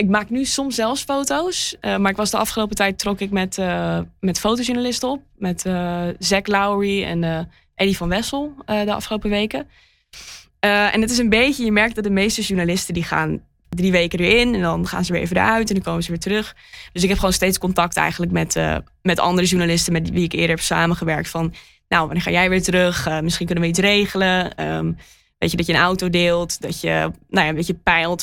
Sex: female